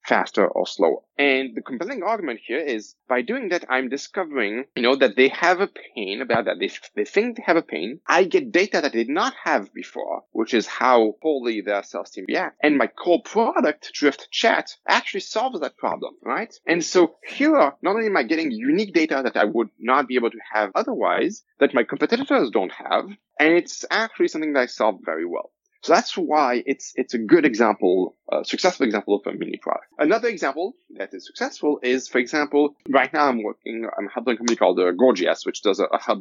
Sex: male